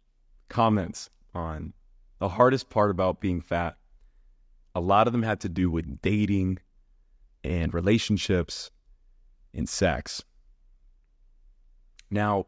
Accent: American